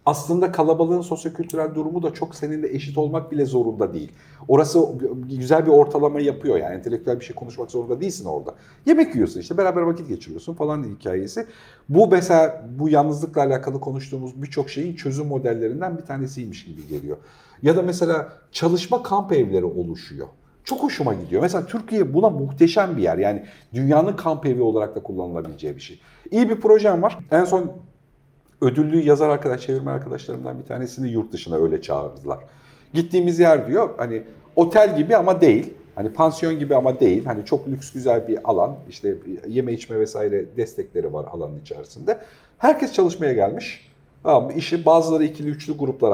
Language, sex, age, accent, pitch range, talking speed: Turkish, male, 50-69, native, 135-185 Hz, 165 wpm